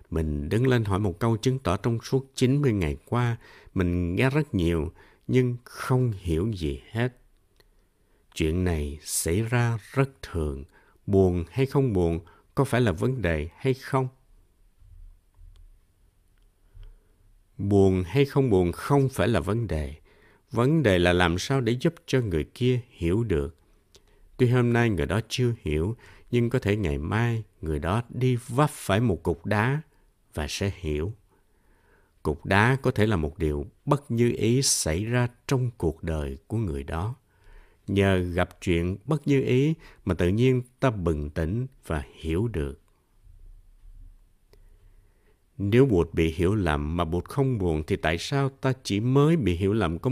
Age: 60-79